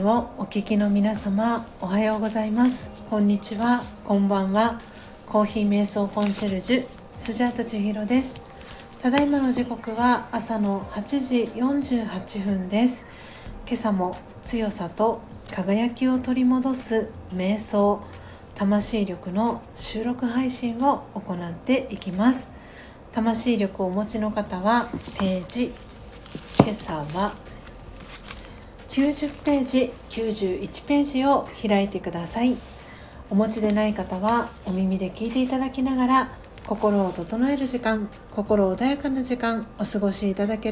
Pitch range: 200-245 Hz